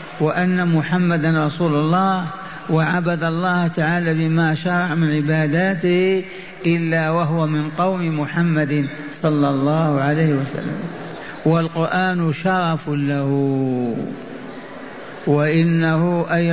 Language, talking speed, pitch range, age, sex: Arabic, 90 wpm, 160-185 Hz, 50-69, male